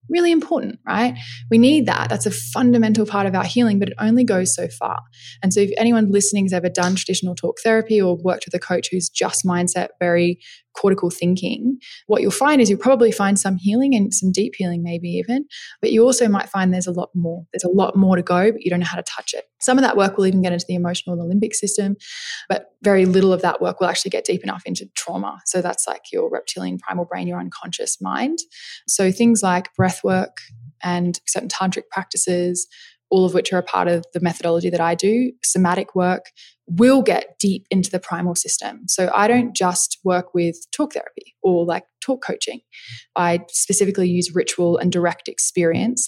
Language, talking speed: English, 215 wpm